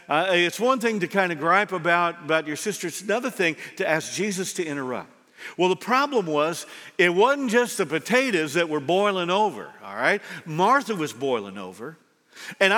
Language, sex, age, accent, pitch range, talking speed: English, male, 50-69, American, 170-220 Hz, 190 wpm